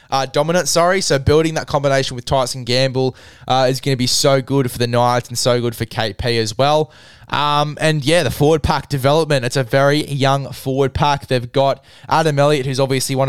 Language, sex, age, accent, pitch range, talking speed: English, male, 20-39, Australian, 125-145 Hz, 210 wpm